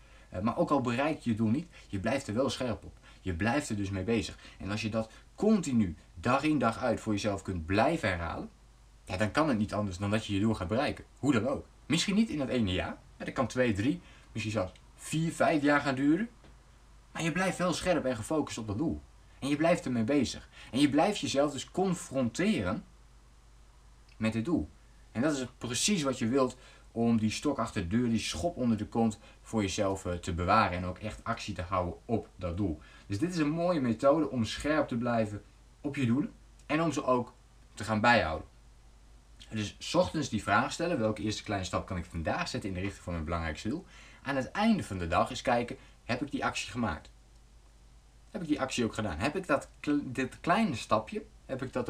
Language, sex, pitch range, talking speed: Dutch, male, 100-135 Hz, 220 wpm